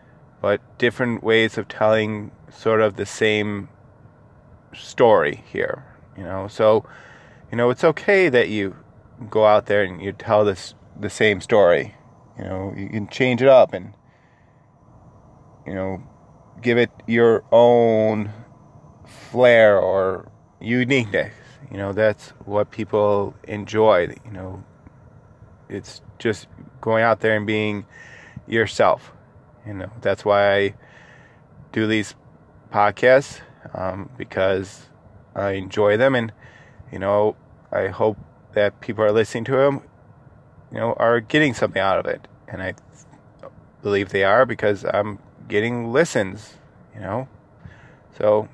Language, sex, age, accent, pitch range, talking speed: English, male, 20-39, American, 105-125 Hz, 130 wpm